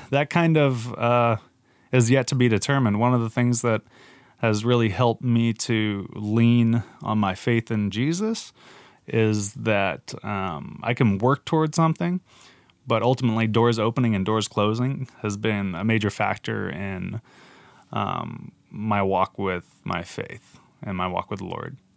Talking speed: 160 wpm